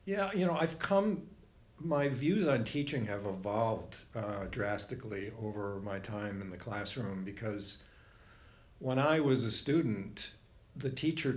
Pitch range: 105-130 Hz